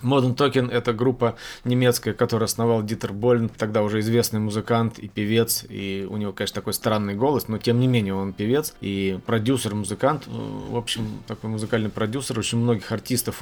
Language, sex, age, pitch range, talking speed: Russian, male, 20-39, 110-125 Hz, 170 wpm